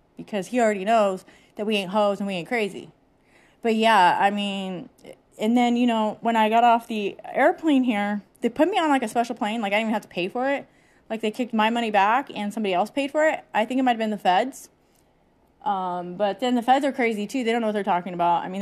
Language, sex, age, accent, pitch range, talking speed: English, female, 30-49, American, 185-240 Hz, 260 wpm